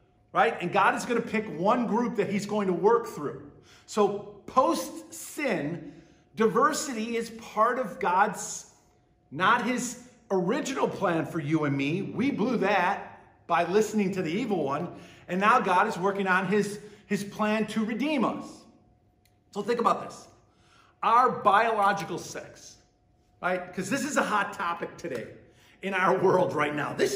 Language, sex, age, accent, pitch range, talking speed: English, male, 50-69, American, 190-235 Hz, 160 wpm